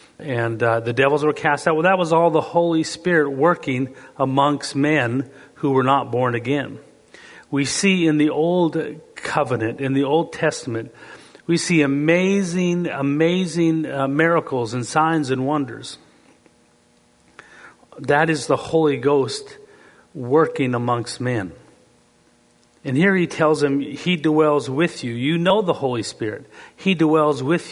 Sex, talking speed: male, 145 wpm